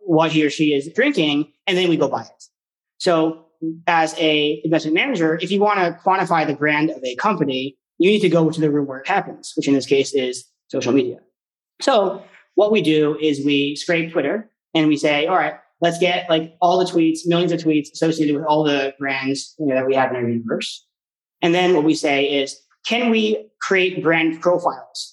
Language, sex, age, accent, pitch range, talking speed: English, male, 30-49, American, 150-175 Hz, 215 wpm